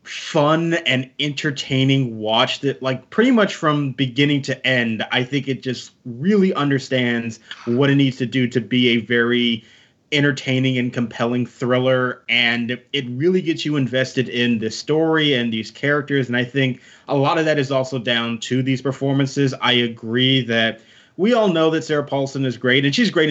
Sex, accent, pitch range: male, American, 120-160 Hz